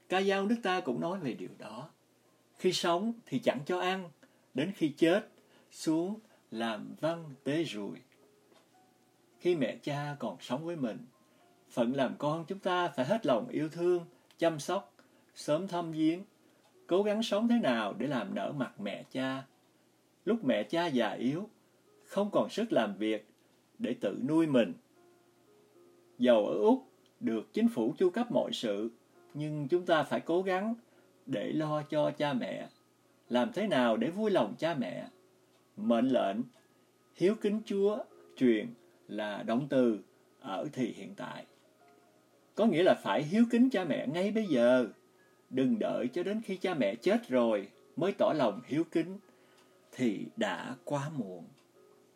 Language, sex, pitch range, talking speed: English, male, 135-225 Hz, 160 wpm